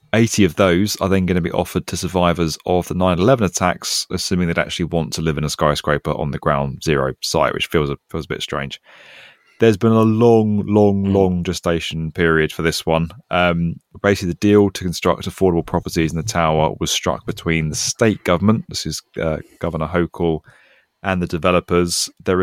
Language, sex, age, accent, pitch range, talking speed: English, male, 30-49, British, 80-100 Hz, 195 wpm